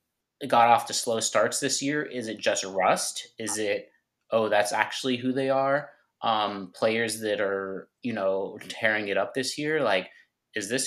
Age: 20-39